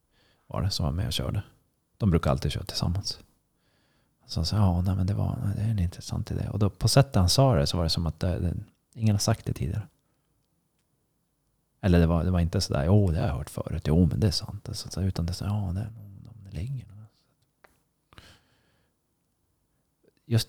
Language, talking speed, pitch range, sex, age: Swedish, 220 wpm, 85-105 Hz, male, 30-49